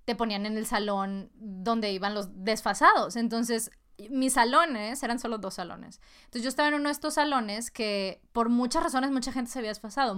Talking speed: 195 wpm